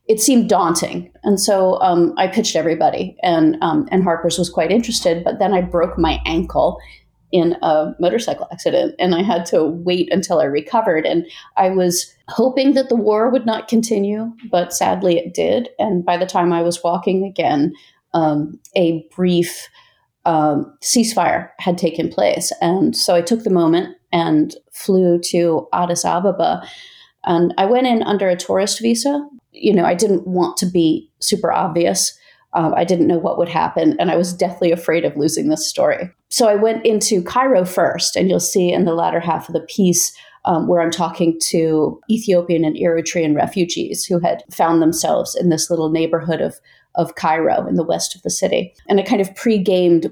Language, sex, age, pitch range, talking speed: English, female, 30-49, 170-215 Hz, 185 wpm